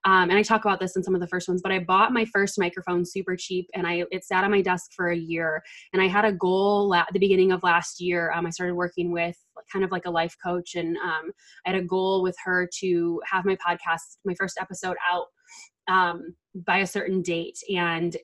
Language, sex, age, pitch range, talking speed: English, female, 20-39, 175-195 Hz, 245 wpm